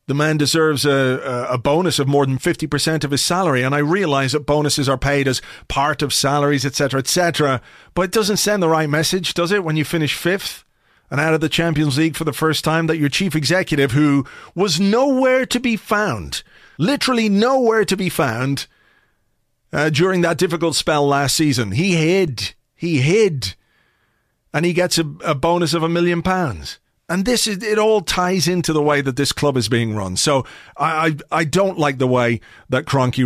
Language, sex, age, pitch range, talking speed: English, male, 40-59, 135-170 Hz, 200 wpm